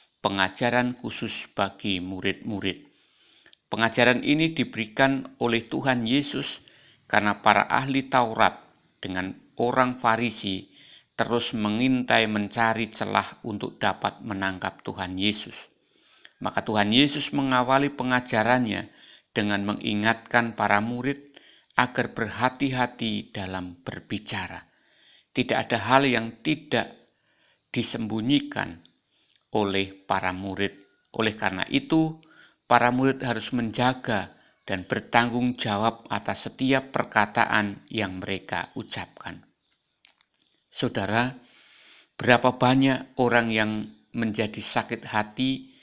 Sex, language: male, Indonesian